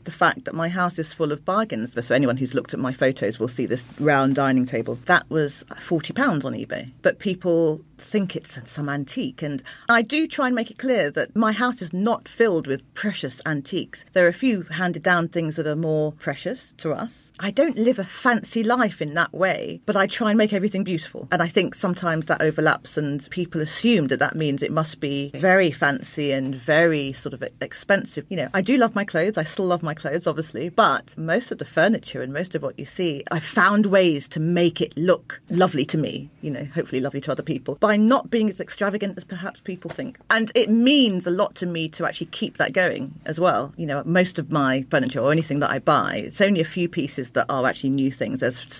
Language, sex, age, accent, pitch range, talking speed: English, female, 40-59, British, 140-195 Hz, 230 wpm